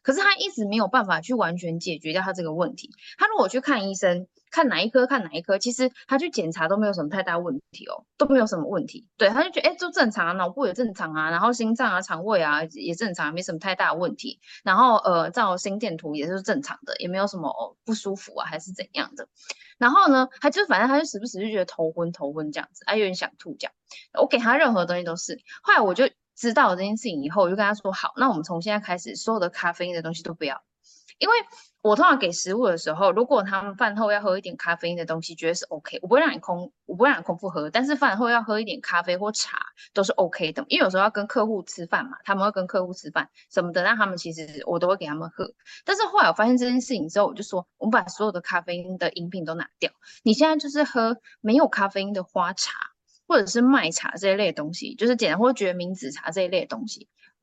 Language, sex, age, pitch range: Chinese, female, 20-39, 175-255 Hz